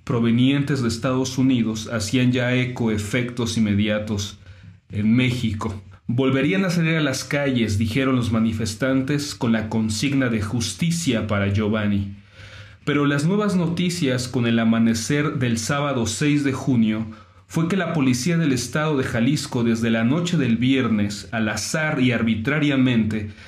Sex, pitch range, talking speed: male, 110-140 Hz, 145 wpm